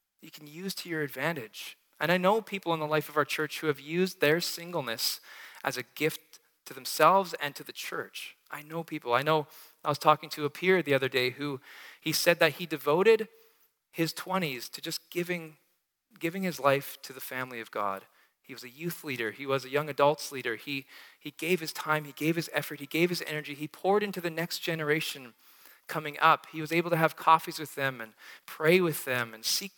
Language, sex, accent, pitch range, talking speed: English, male, American, 140-175 Hz, 220 wpm